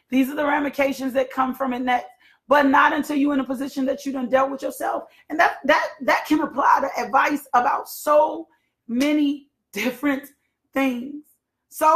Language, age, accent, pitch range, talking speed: English, 30-49, American, 265-300 Hz, 175 wpm